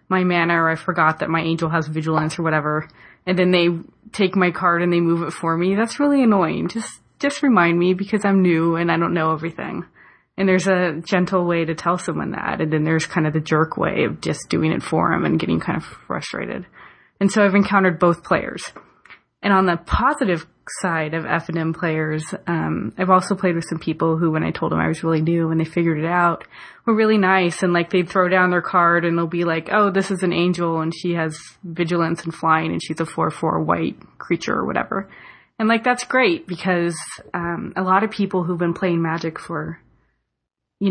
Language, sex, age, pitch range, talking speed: English, female, 20-39, 165-185 Hz, 220 wpm